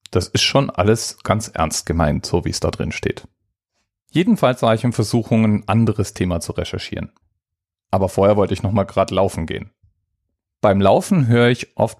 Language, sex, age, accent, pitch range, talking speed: German, male, 40-59, German, 95-120 Hz, 180 wpm